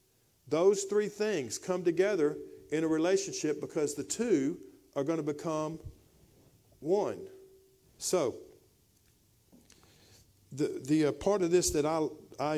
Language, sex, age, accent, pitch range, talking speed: English, male, 50-69, American, 145-185 Hz, 125 wpm